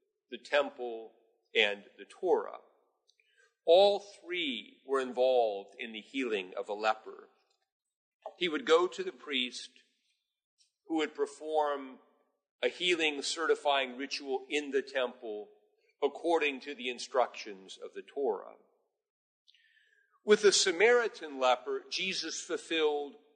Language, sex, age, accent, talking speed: English, male, 50-69, American, 115 wpm